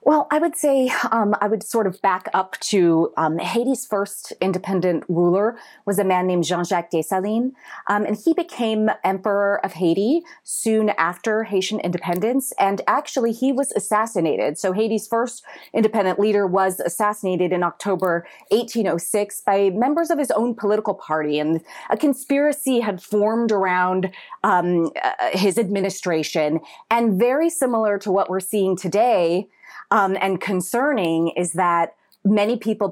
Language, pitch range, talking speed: English, 185-235 Hz, 150 wpm